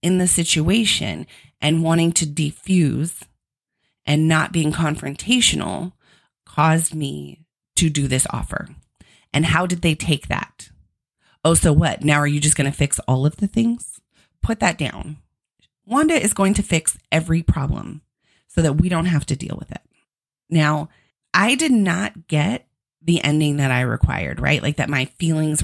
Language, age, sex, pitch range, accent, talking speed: English, 30-49, female, 145-180 Hz, American, 165 wpm